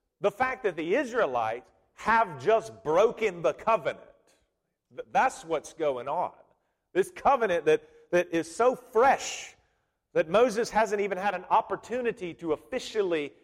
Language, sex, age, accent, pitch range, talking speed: English, male, 40-59, American, 140-215 Hz, 135 wpm